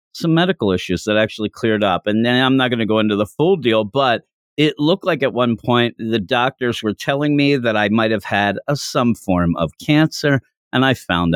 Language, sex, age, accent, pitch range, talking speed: English, male, 50-69, American, 105-145 Hz, 225 wpm